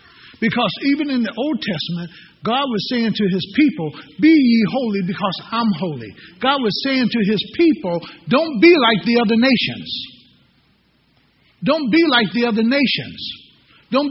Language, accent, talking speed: English, American, 155 wpm